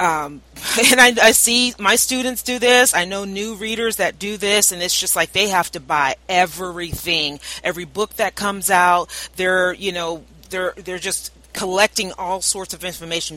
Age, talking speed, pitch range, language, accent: 40-59, 185 wpm, 160-200 Hz, English, American